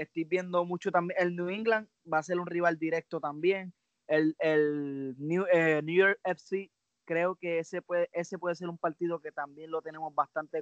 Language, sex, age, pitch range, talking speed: English, male, 20-39, 150-180 Hz, 200 wpm